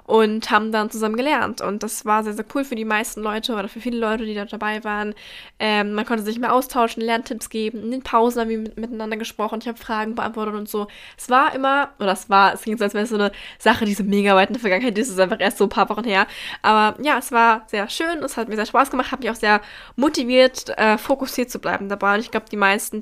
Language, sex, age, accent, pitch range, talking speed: German, female, 10-29, German, 210-240 Hz, 265 wpm